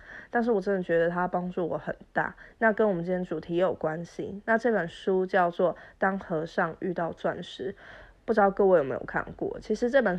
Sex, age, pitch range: female, 20-39, 180-225 Hz